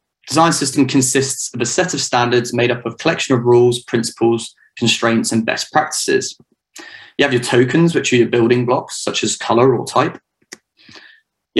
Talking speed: 175 wpm